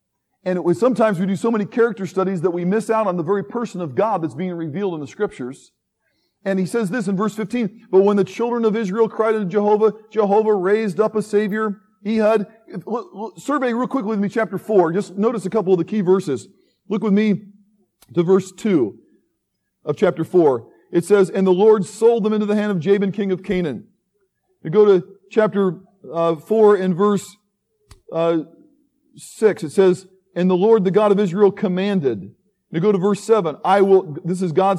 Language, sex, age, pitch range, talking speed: English, male, 40-59, 185-220 Hz, 195 wpm